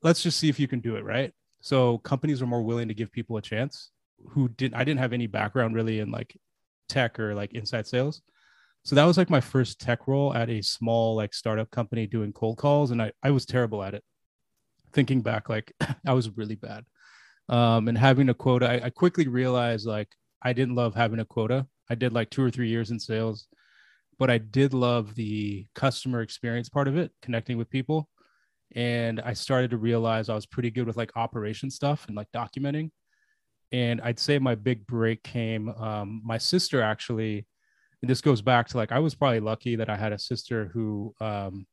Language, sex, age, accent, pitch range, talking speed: English, male, 20-39, American, 110-130 Hz, 210 wpm